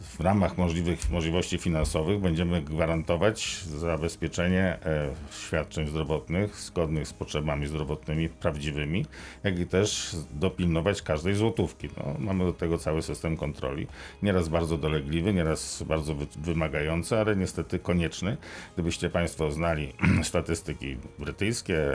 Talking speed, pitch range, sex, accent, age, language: 115 wpm, 80-95 Hz, male, native, 50-69, Polish